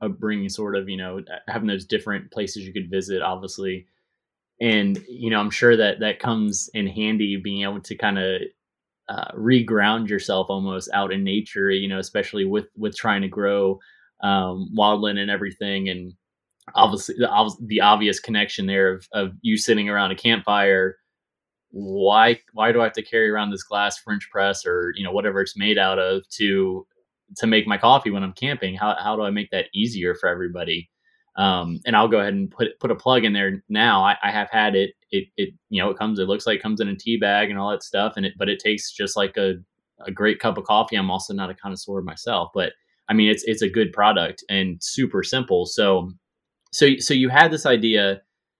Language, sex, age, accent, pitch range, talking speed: English, male, 20-39, American, 95-115 Hz, 210 wpm